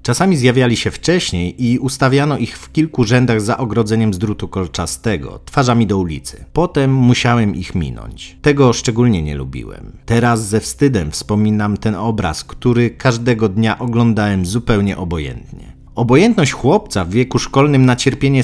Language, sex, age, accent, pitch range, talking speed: Polish, male, 40-59, native, 100-125 Hz, 145 wpm